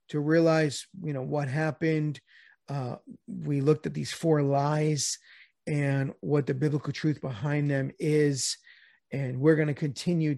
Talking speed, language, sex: 150 wpm, English, male